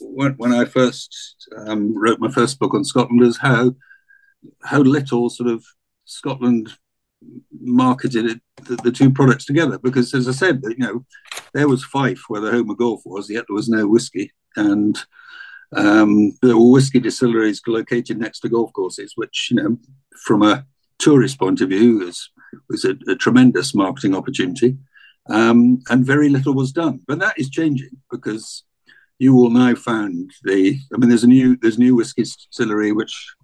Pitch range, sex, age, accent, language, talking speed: 110-145 Hz, male, 60-79, British, German, 175 wpm